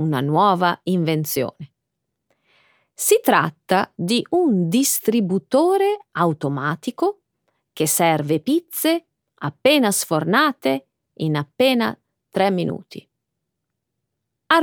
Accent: native